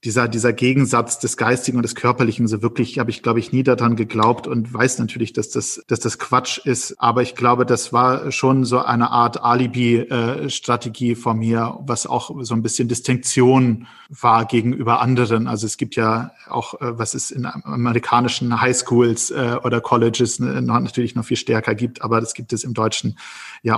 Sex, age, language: male, 40-59, German